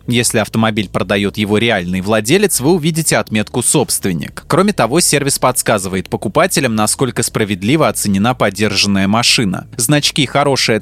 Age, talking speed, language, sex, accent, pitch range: 20-39, 120 wpm, Russian, male, native, 105-145 Hz